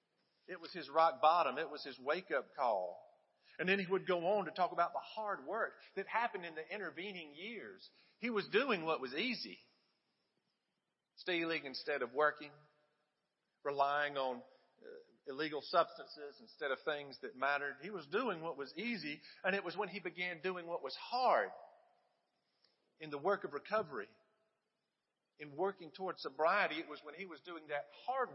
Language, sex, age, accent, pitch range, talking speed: English, male, 50-69, American, 150-200 Hz, 170 wpm